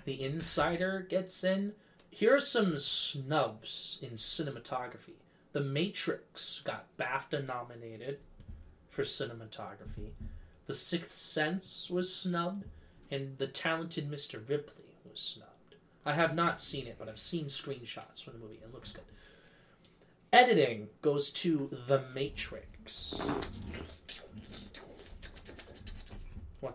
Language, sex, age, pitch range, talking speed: English, male, 20-39, 115-170 Hz, 110 wpm